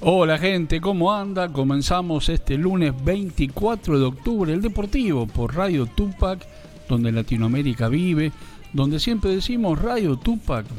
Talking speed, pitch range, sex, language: 130 wpm, 125-165 Hz, male, Spanish